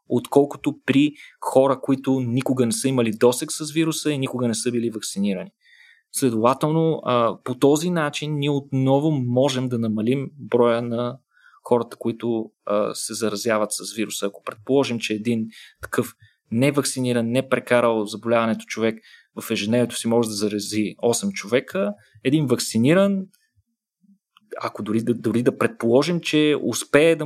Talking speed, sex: 140 wpm, male